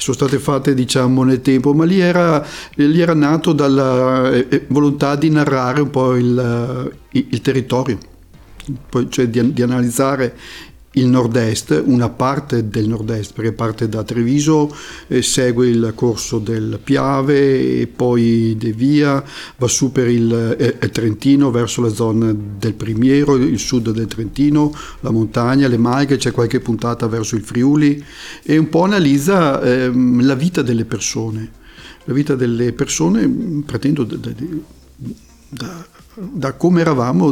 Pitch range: 115-140 Hz